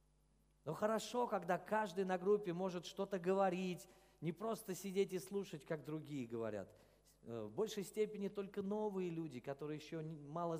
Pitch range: 130-185 Hz